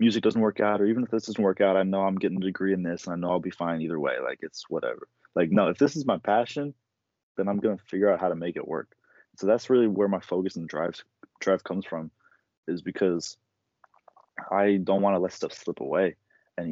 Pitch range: 95-110 Hz